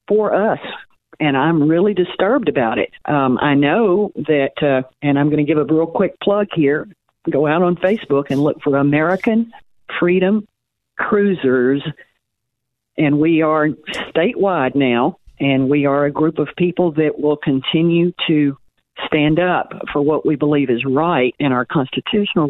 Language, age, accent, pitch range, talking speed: English, 50-69, American, 135-170 Hz, 160 wpm